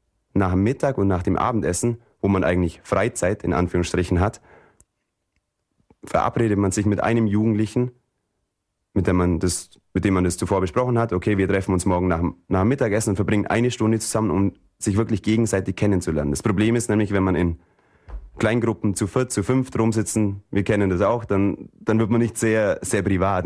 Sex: male